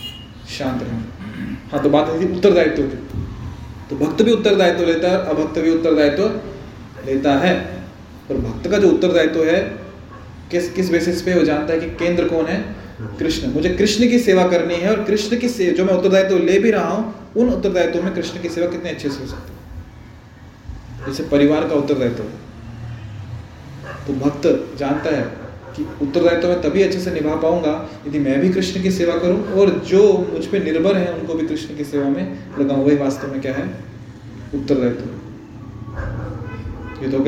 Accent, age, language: native, 30-49, Hindi